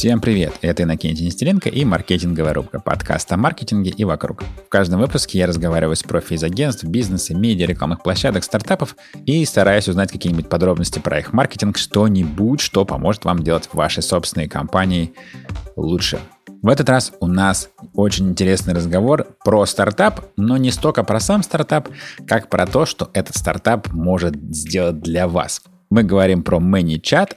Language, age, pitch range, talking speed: Russian, 30-49, 85-110 Hz, 160 wpm